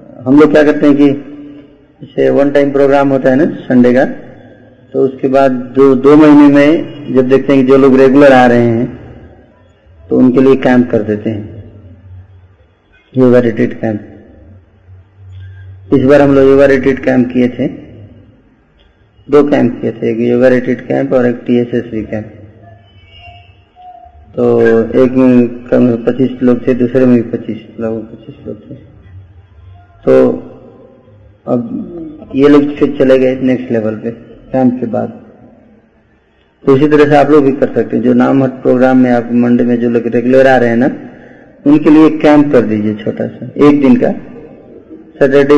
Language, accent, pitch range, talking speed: Hindi, native, 110-140 Hz, 165 wpm